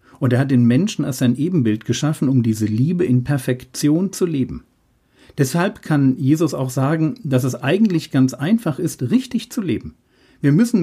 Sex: male